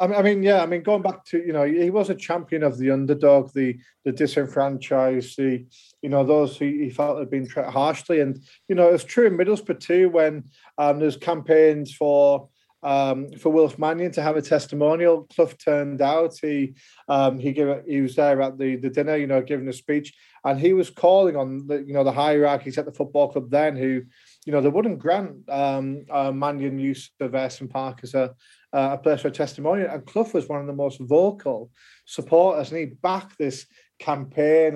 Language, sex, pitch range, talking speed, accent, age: English, male, 135-160 Hz, 210 wpm, British, 30-49